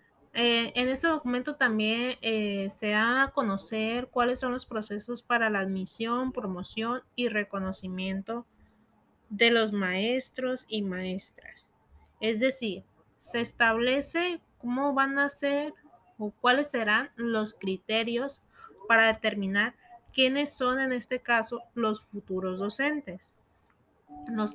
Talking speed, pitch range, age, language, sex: 120 wpm, 205-255 Hz, 20-39, Spanish, female